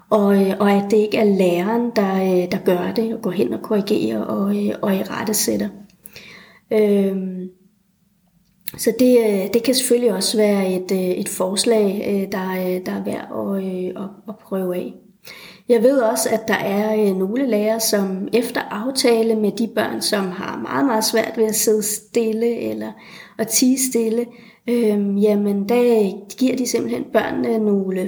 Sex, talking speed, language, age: female, 160 wpm, Danish, 30-49